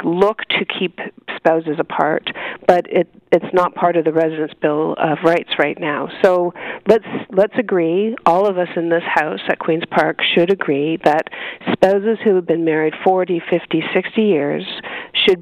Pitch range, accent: 160-185 Hz, American